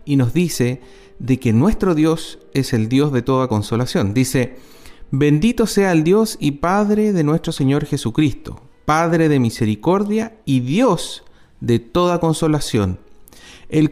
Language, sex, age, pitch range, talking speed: Spanish, male, 40-59, 125-175 Hz, 140 wpm